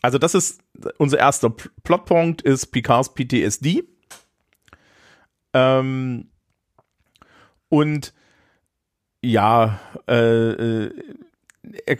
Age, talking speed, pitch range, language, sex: 40-59, 70 wpm, 100-125 Hz, German, male